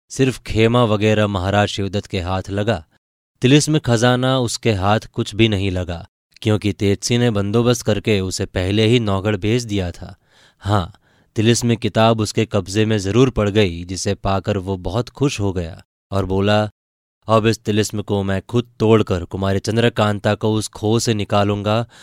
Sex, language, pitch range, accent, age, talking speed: male, Hindi, 100-115 Hz, native, 20-39, 165 wpm